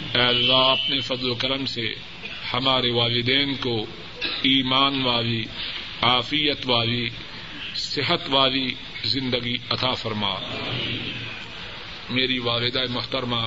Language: Urdu